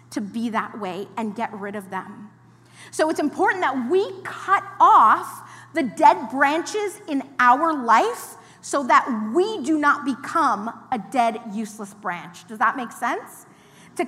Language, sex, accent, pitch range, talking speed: English, female, American, 230-325 Hz, 160 wpm